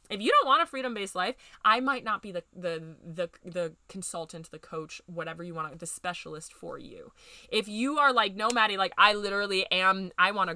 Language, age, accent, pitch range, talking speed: English, 20-39, American, 180-235 Hz, 210 wpm